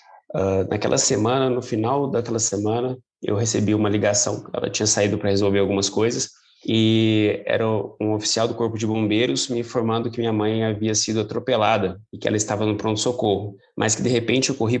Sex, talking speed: male, 185 wpm